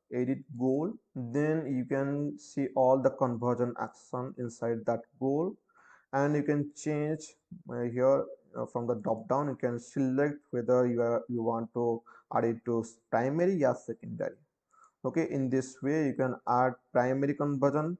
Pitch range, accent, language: 125-150 Hz, Indian, English